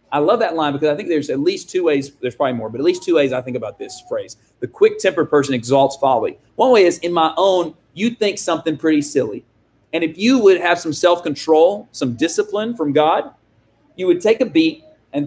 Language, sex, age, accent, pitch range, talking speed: English, male, 30-49, American, 135-200 Hz, 230 wpm